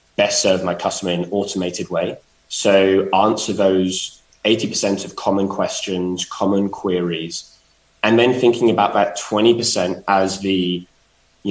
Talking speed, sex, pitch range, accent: 145 wpm, male, 90-100 Hz, British